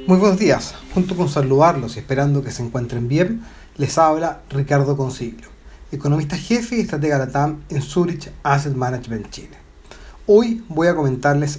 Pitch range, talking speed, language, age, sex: 130-180 Hz, 160 wpm, Spanish, 30-49, male